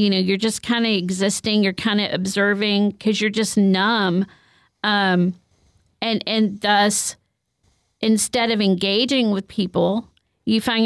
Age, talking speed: 40-59, 145 wpm